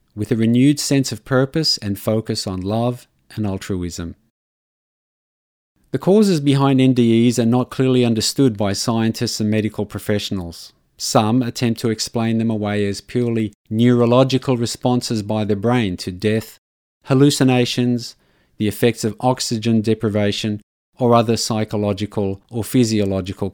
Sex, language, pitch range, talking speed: male, English, 105-125 Hz, 130 wpm